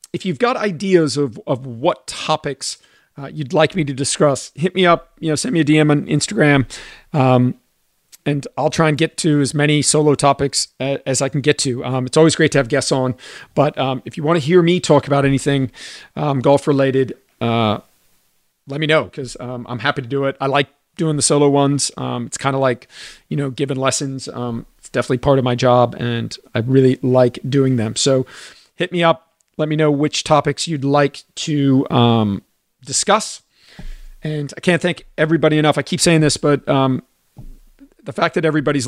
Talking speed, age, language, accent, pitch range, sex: 200 wpm, 40-59, English, American, 130-150 Hz, male